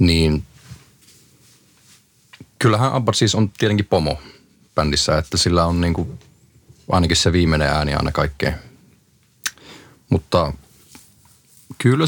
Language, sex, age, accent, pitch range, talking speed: Finnish, male, 30-49, native, 80-105 Hz, 105 wpm